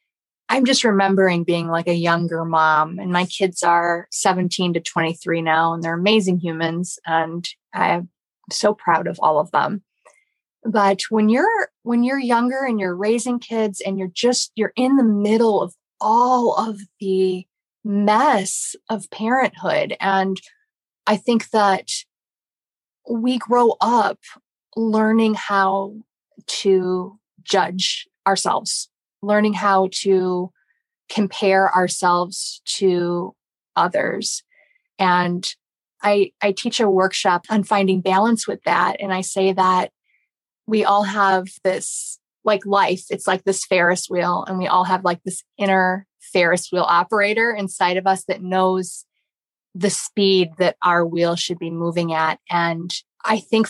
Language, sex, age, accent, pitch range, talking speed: English, female, 20-39, American, 180-220 Hz, 140 wpm